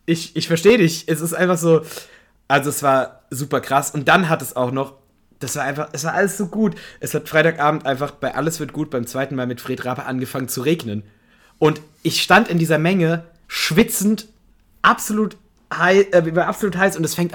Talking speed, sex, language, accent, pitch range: 200 wpm, male, German, German, 140-185 Hz